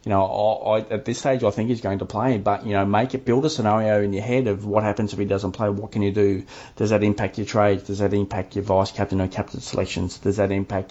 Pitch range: 100-115 Hz